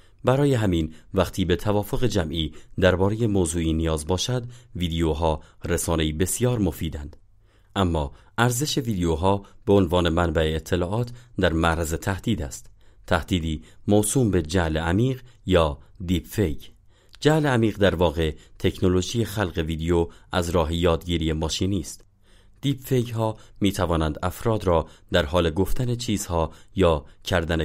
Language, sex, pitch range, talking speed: Persian, male, 80-105 Hz, 125 wpm